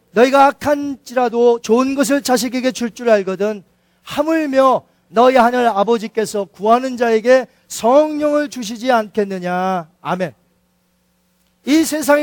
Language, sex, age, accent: Korean, male, 40-59, native